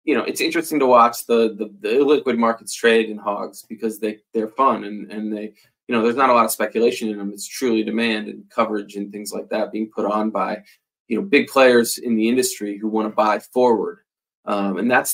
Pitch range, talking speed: 110-125 Hz, 235 wpm